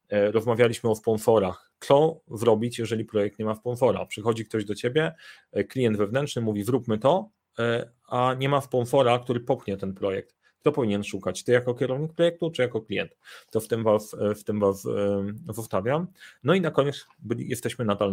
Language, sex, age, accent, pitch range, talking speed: Polish, male, 30-49, native, 105-125 Hz, 165 wpm